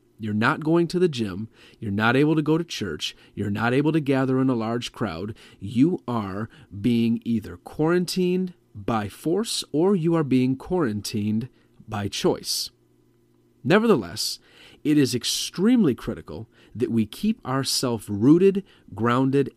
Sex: male